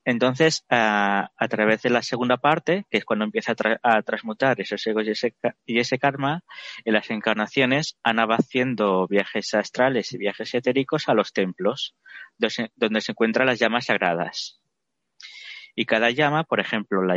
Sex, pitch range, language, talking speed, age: male, 105-130 Hz, Spanish, 165 wpm, 20-39